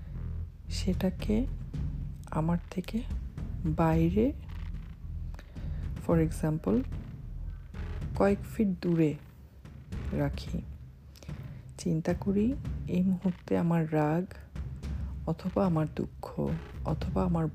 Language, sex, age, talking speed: Bengali, female, 50-69, 50 wpm